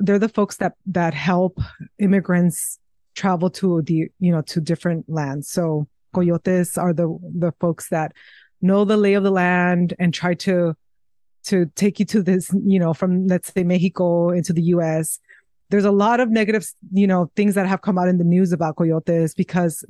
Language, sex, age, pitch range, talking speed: English, female, 20-39, 170-200 Hz, 195 wpm